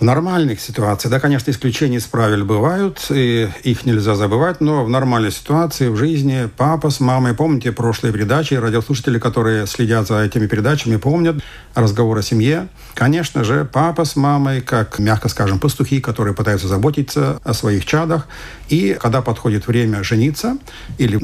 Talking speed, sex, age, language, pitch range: 160 wpm, male, 60-79, Russian, 110-145 Hz